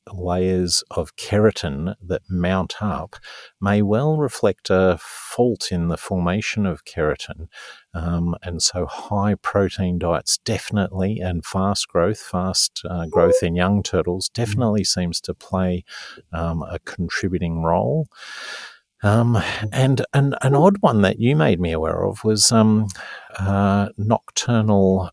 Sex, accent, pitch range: male, Australian, 85-105 Hz